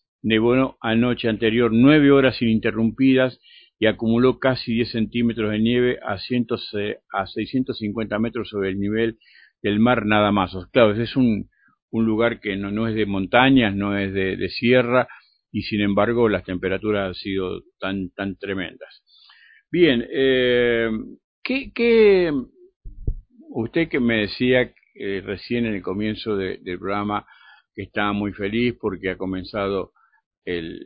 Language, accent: Spanish, Argentinian